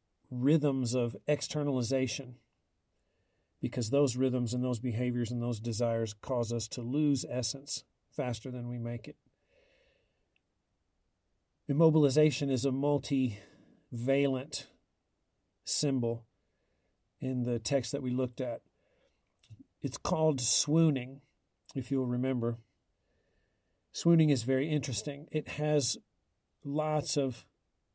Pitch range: 120-145 Hz